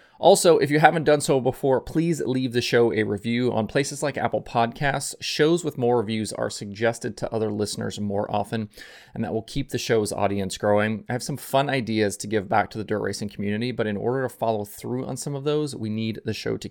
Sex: male